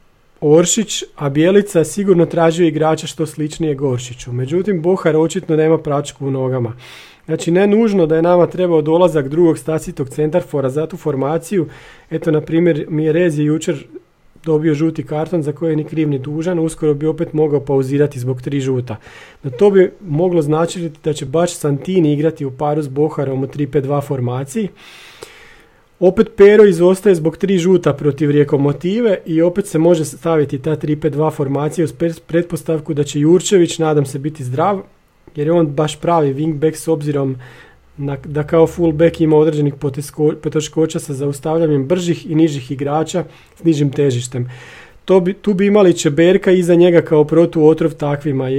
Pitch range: 145-170 Hz